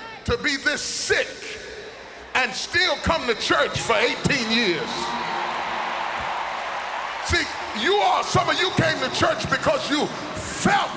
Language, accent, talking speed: English, American, 130 wpm